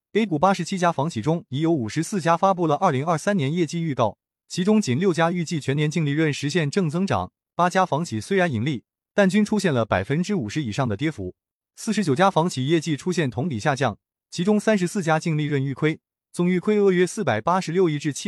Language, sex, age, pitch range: Chinese, male, 20-39, 135-185 Hz